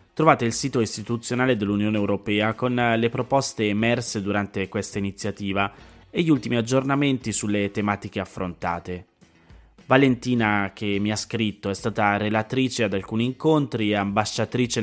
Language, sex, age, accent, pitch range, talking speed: Italian, male, 20-39, native, 100-130 Hz, 135 wpm